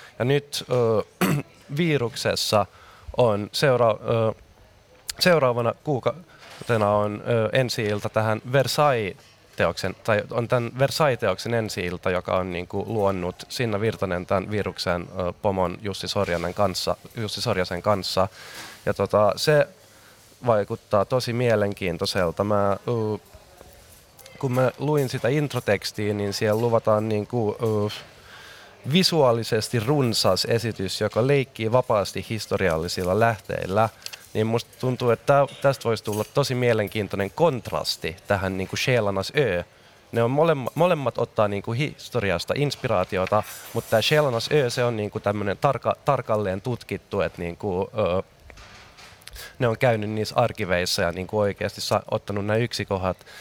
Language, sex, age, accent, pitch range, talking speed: Finnish, male, 20-39, native, 100-125 Hz, 120 wpm